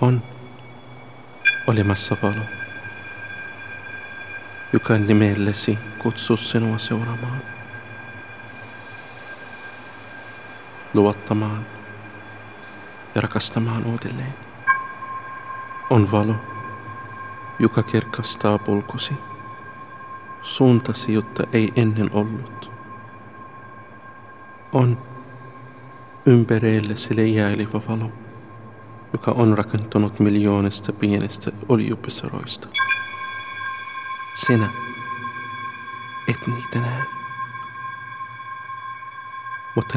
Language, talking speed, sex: Malayalam, 55 wpm, male